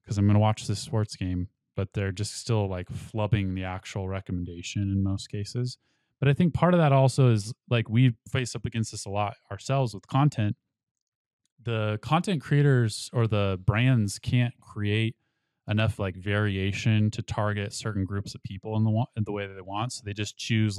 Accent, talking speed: American, 195 wpm